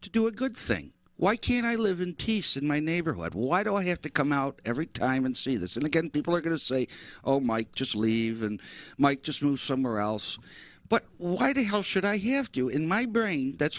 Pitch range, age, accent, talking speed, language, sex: 125-185 Hz, 60-79, American, 240 wpm, English, male